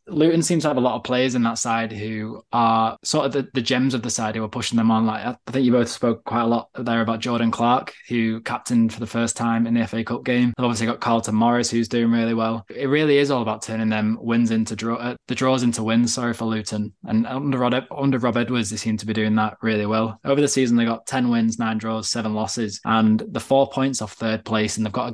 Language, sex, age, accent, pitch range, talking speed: English, male, 20-39, British, 110-120 Hz, 265 wpm